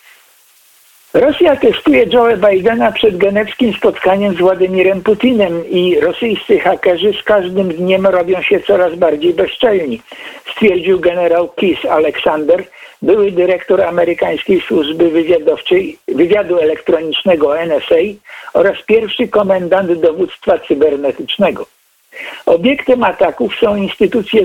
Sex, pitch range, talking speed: male, 185-260 Hz, 100 wpm